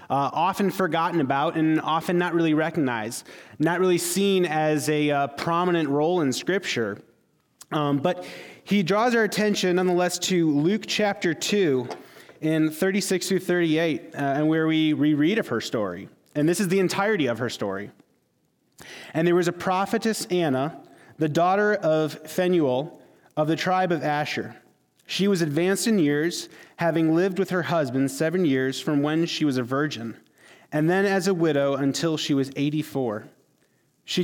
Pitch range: 140-180 Hz